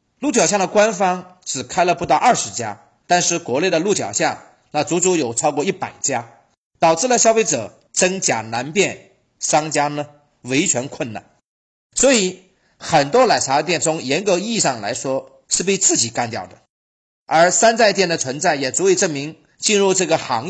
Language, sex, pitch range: Chinese, male, 135-190 Hz